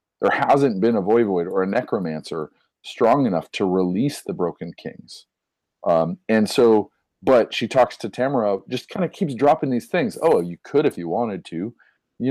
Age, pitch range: 40-59, 90-115 Hz